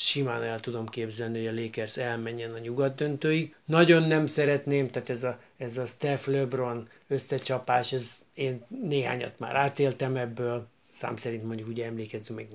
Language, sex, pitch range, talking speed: Hungarian, male, 120-140 Hz, 165 wpm